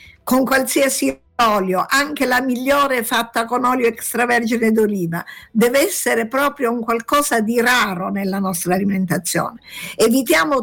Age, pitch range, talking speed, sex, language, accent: 50-69, 205-260 Hz, 125 wpm, female, Italian, native